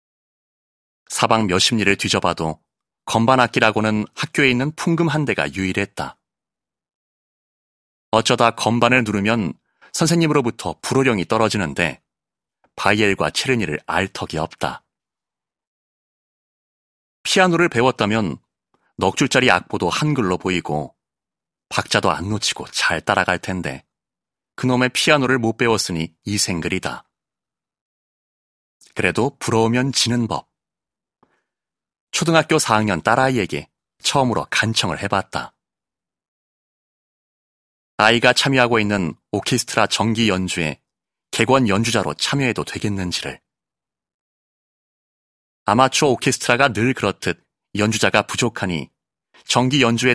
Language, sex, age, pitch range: Korean, male, 30-49, 95-125 Hz